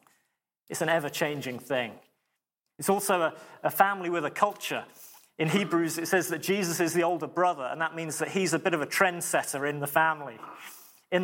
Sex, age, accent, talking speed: male, 30-49, British, 200 wpm